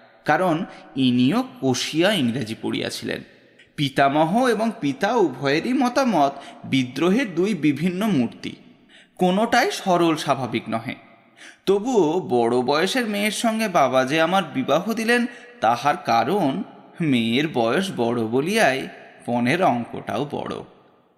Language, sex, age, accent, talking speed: Bengali, male, 20-39, native, 105 wpm